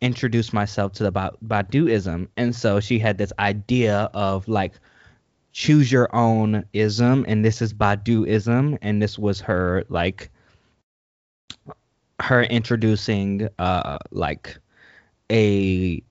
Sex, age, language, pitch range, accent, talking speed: male, 20-39, English, 95-120 Hz, American, 120 wpm